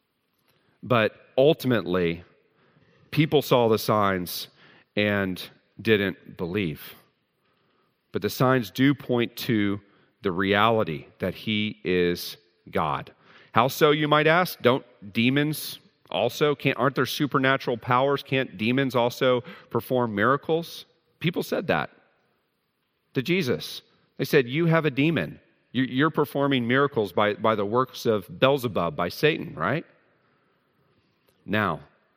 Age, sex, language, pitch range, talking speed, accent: 40-59, male, English, 100-135 Hz, 120 wpm, American